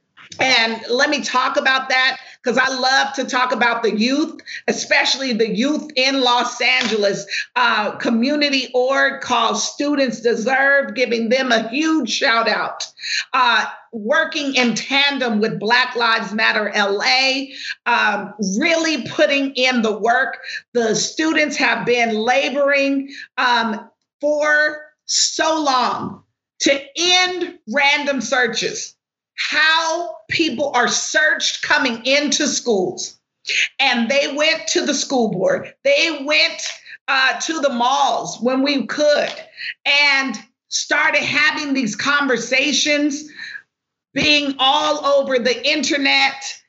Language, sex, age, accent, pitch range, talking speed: English, female, 40-59, American, 245-295 Hz, 120 wpm